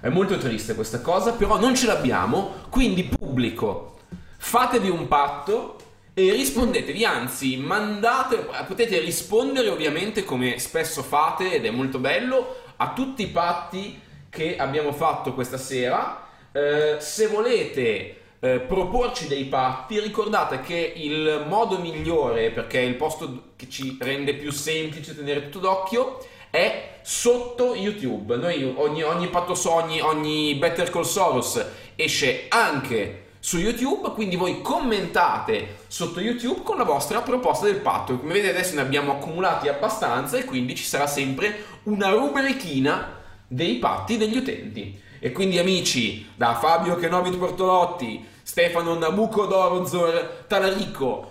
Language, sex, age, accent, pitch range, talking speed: Italian, male, 20-39, native, 150-230 Hz, 140 wpm